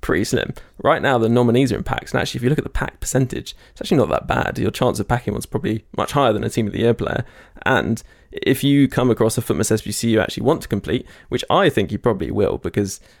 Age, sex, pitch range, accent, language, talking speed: 20-39, male, 105-120 Hz, British, English, 265 wpm